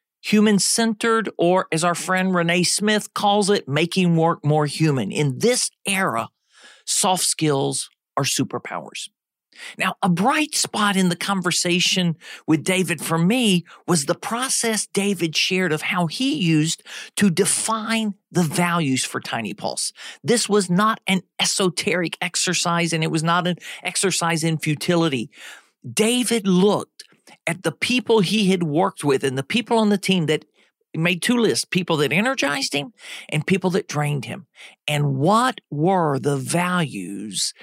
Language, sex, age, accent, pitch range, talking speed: English, male, 40-59, American, 155-200 Hz, 150 wpm